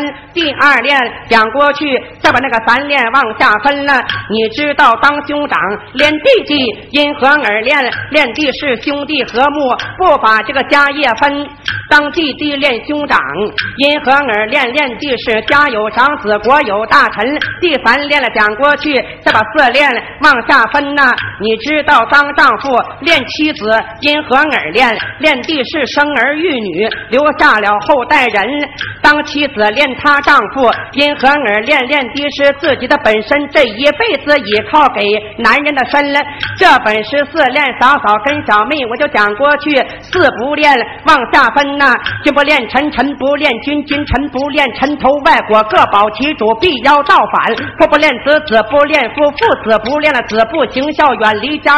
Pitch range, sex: 245-295 Hz, female